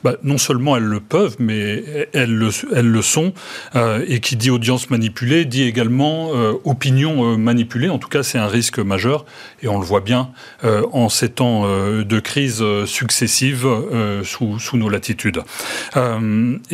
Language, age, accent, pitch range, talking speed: French, 40-59, French, 110-135 Hz, 180 wpm